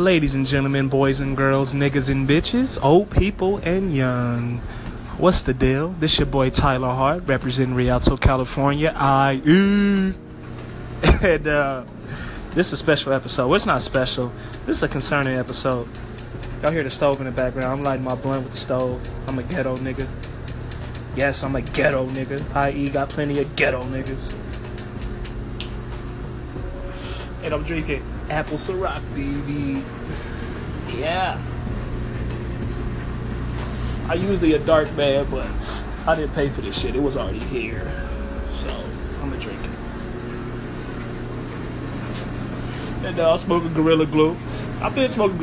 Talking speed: 145 wpm